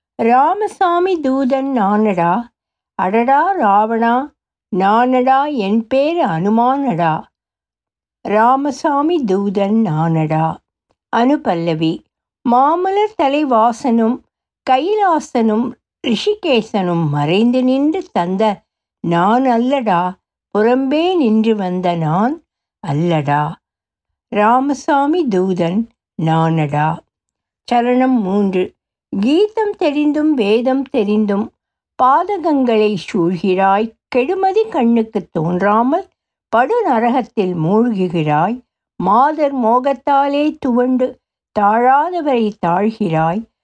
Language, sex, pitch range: Tamil, female, 195-285 Hz